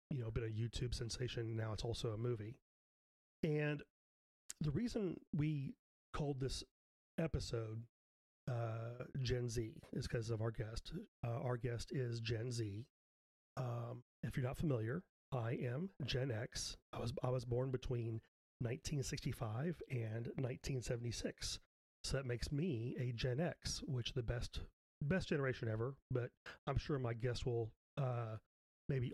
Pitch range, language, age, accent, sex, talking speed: 115-140 Hz, English, 30-49, American, male, 145 wpm